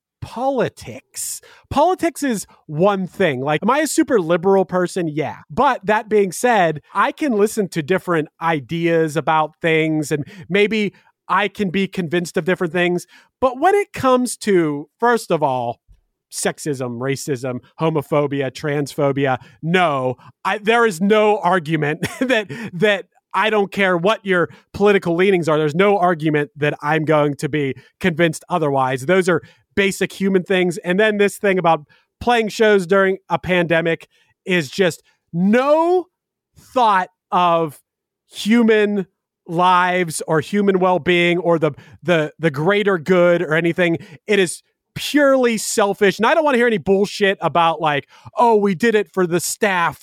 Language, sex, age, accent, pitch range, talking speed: English, male, 30-49, American, 155-205 Hz, 150 wpm